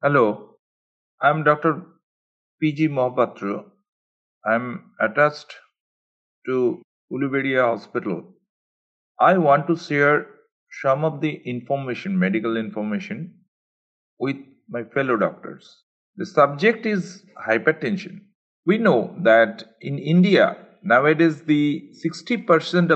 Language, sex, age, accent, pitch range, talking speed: English, male, 50-69, Indian, 140-190 Hz, 100 wpm